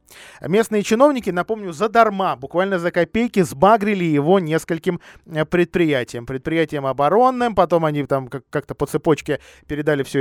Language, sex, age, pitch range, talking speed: Russian, male, 20-39, 140-190 Hz, 130 wpm